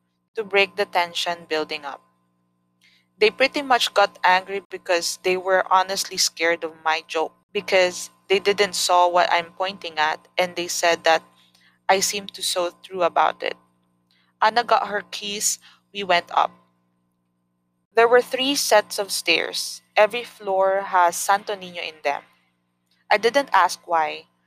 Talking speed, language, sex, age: 150 wpm, Filipino, female, 20-39